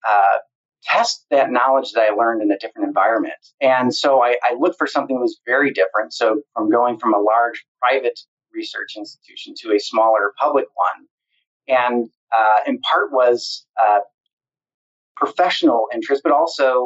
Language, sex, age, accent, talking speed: English, male, 30-49, American, 165 wpm